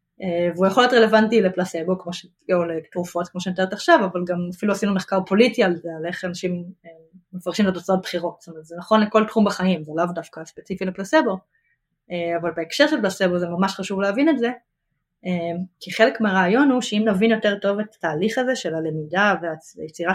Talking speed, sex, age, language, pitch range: 205 wpm, female, 20-39, Hebrew, 175-220 Hz